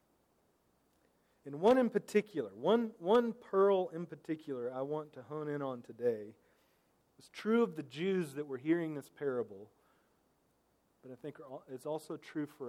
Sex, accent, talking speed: male, American, 155 wpm